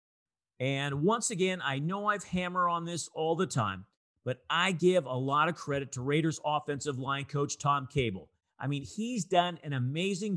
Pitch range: 120-175 Hz